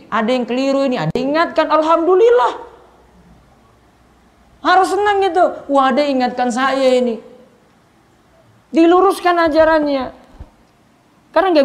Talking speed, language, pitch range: 110 wpm, Indonesian, 190-275 Hz